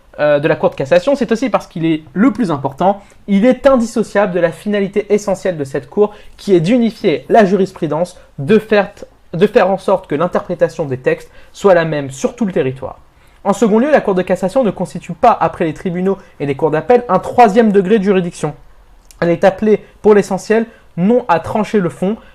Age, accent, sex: 20-39, French, male